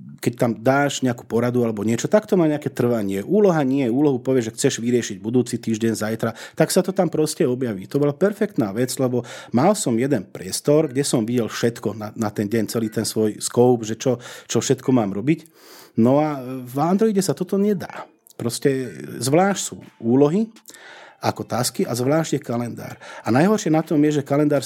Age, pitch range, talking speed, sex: 30-49, 115-150 Hz, 190 wpm, male